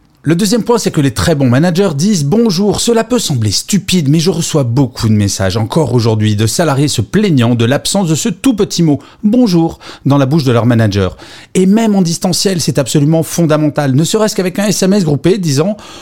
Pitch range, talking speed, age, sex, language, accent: 115-170 Hz, 205 wpm, 40-59, male, French, French